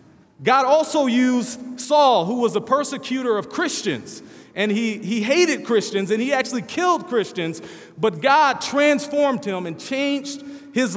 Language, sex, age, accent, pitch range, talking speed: English, male, 40-59, American, 205-260 Hz, 150 wpm